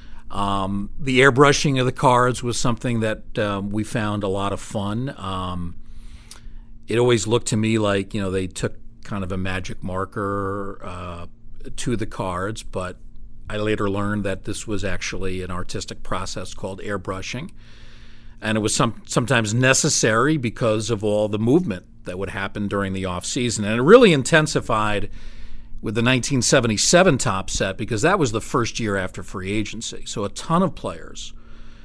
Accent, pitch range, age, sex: American, 100-120 Hz, 40-59, male